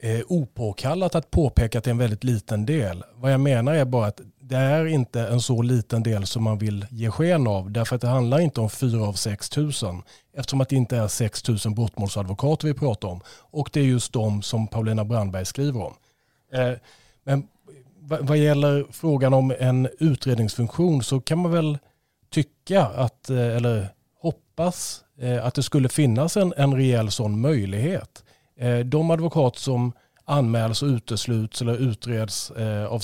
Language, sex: English, male